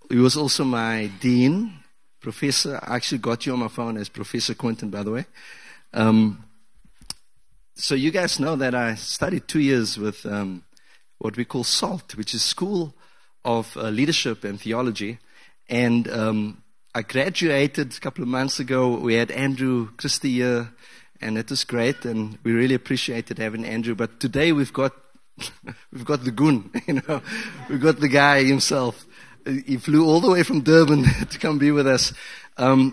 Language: English